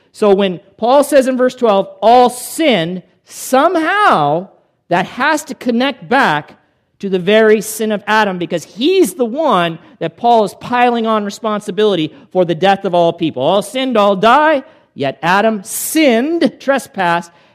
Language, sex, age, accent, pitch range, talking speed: English, male, 50-69, American, 170-235 Hz, 155 wpm